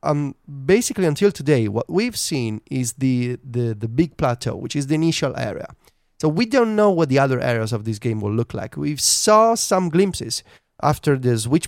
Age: 30-49